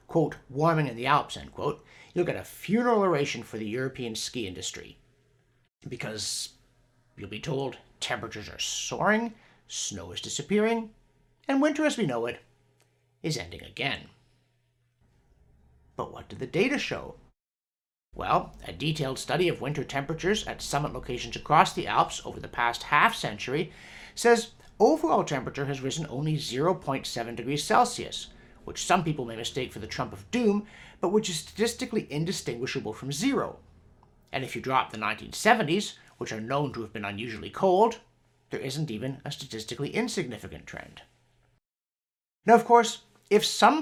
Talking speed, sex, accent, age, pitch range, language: 155 wpm, male, American, 60-79, 115-180 Hz, English